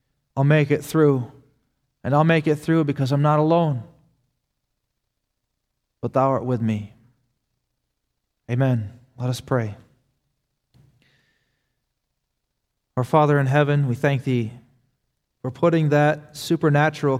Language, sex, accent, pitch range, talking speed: English, male, American, 125-145 Hz, 115 wpm